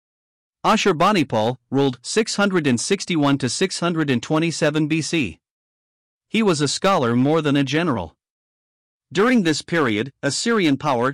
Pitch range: 125-170 Hz